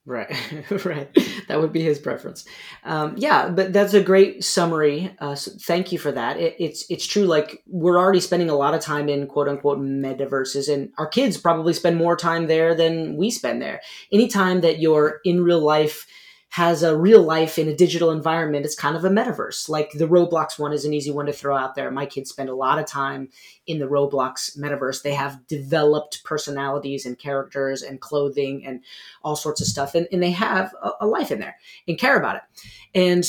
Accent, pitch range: American, 145-185 Hz